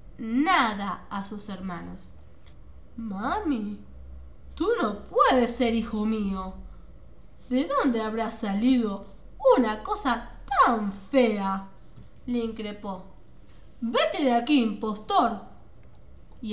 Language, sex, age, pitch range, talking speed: Spanish, female, 20-39, 205-260 Hz, 95 wpm